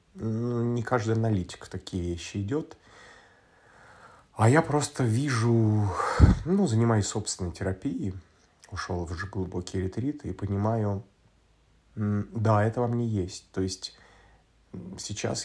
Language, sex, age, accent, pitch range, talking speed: Russian, male, 30-49, native, 90-105 Hz, 115 wpm